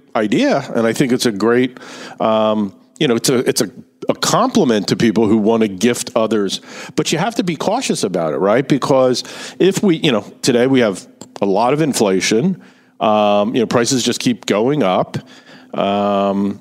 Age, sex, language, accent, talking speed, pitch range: 50-69, male, English, American, 190 wpm, 115-140 Hz